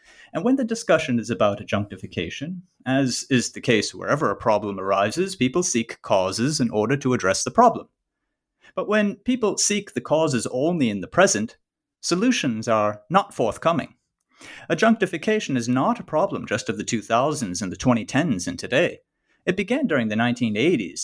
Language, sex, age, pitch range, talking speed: English, male, 30-49, 115-195 Hz, 165 wpm